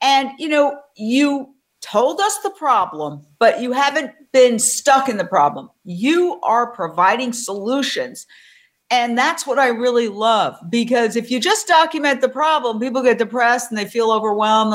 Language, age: English, 50-69